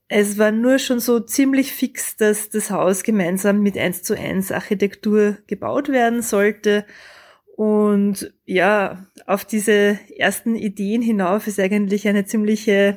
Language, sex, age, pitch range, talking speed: German, female, 20-39, 195-220 Hz, 140 wpm